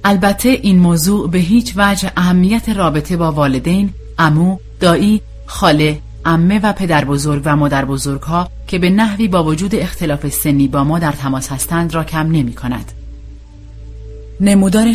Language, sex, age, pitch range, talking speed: Persian, female, 30-49, 130-180 Hz, 155 wpm